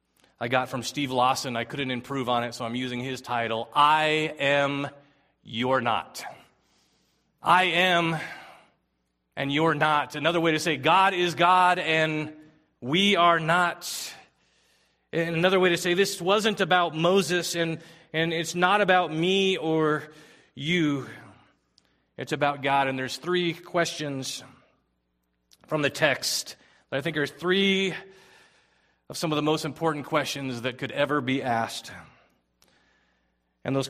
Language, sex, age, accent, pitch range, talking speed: English, male, 30-49, American, 125-170 Hz, 140 wpm